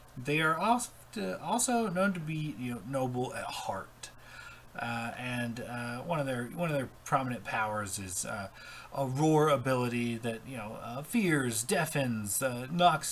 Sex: male